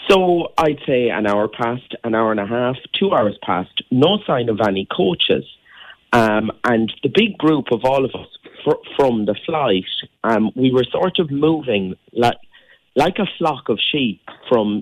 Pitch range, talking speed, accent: 110-155 Hz, 180 wpm, British